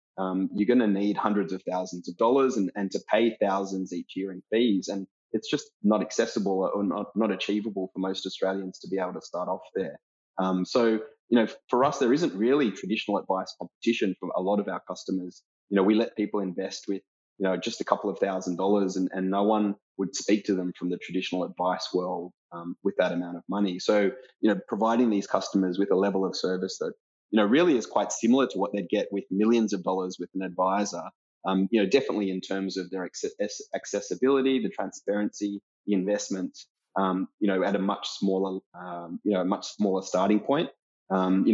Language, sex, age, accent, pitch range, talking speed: English, male, 20-39, Australian, 95-105 Hz, 215 wpm